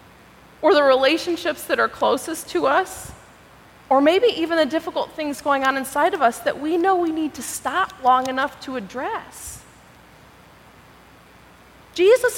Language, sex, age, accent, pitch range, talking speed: English, female, 30-49, American, 265-350 Hz, 150 wpm